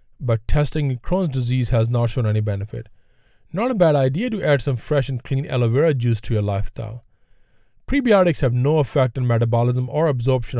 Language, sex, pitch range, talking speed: English, male, 115-145 Hz, 185 wpm